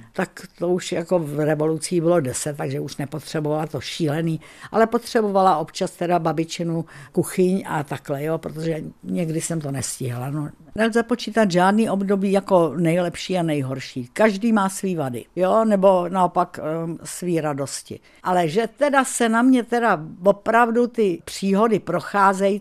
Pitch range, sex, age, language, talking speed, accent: 155-200 Hz, female, 60-79, Czech, 150 wpm, native